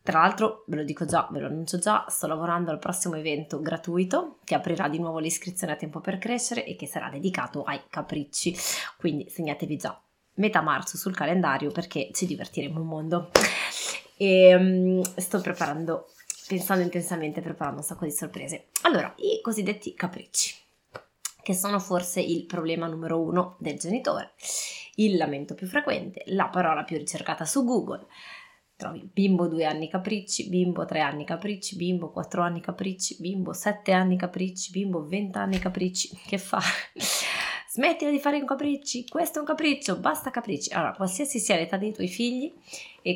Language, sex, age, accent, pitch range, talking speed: Italian, female, 20-39, native, 165-205 Hz, 165 wpm